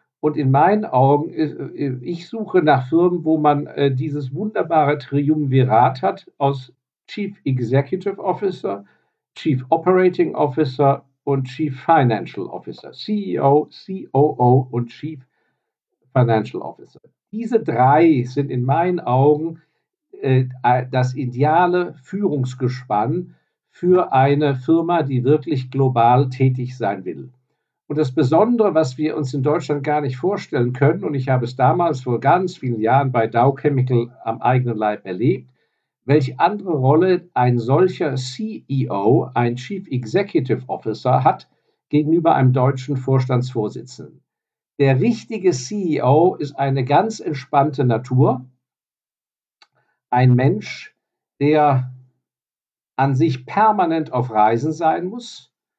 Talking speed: 120 wpm